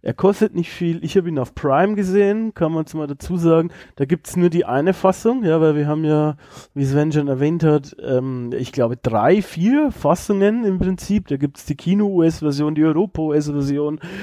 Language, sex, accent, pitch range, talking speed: German, male, German, 140-180 Hz, 200 wpm